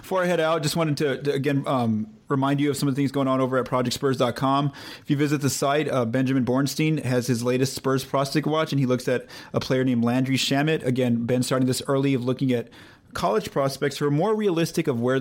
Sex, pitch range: male, 120-140 Hz